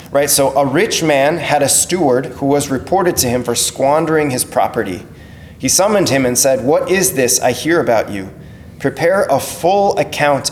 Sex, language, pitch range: male, English, 145-180 Hz